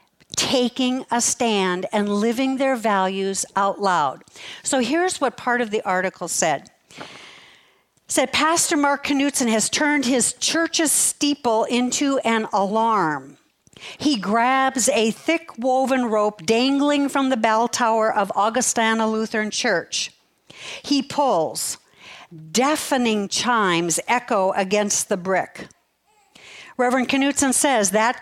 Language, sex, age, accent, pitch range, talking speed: English, female, 60-79, American, 205-265 Hz, 120 wpm